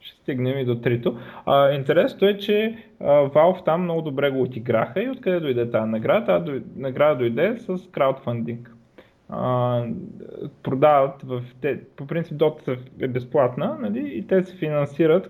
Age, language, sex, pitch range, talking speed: 20-39, Bulgarian, male, 120-165 Hz, 150 wpm